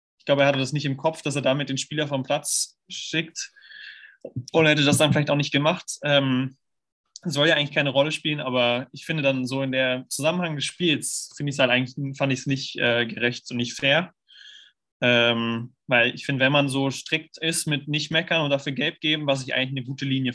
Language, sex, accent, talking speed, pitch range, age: German, male, German, 225 wpm, 125-145 Hz, 20-39